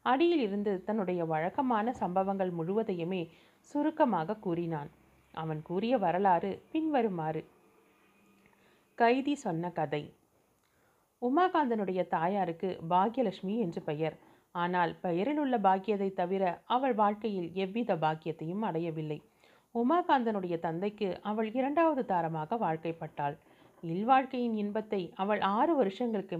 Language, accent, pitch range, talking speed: Tamil, native, 170-235 Hz, 95 wpm